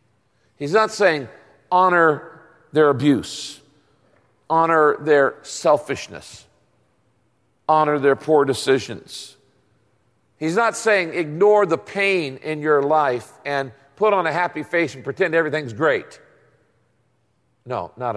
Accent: American